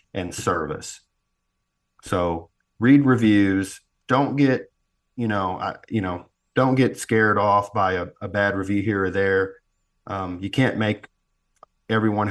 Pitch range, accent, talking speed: 95-115 Hz, American, 135 wpm